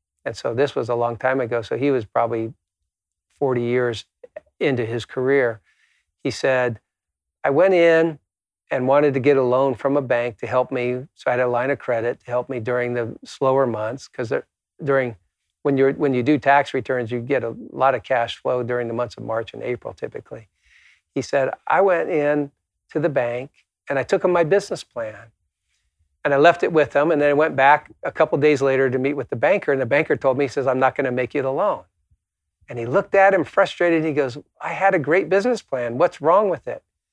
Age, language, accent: 50-69, English, American